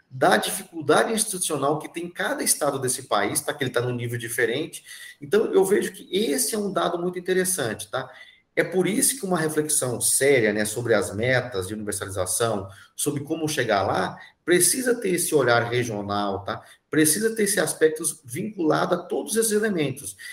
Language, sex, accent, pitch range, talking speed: Portuguese, male, Brazilian, 115-180 Hz, 175 wpm